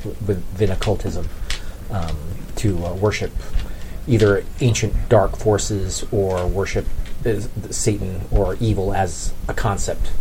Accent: American